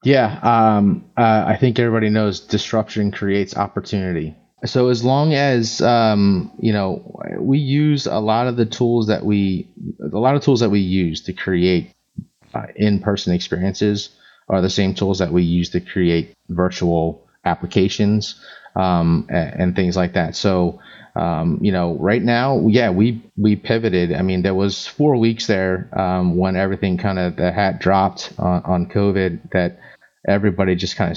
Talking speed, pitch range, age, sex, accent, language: 165 wpm, 90-110 Hz, 30-49, male, American, English